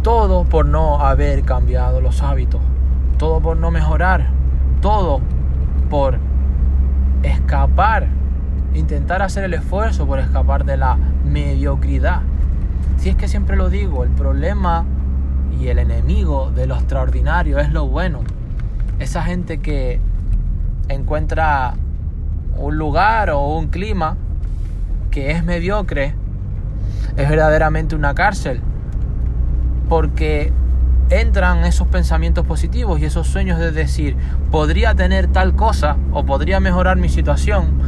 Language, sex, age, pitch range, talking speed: Spanish, male, 20-39, 65-75 Hz, 120 wpm